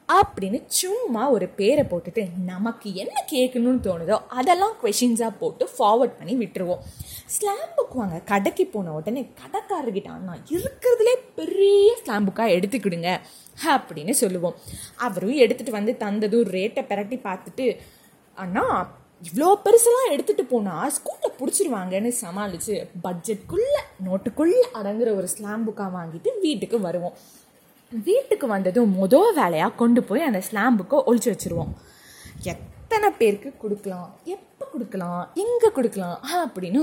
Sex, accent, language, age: female, native, Tamil, 20-39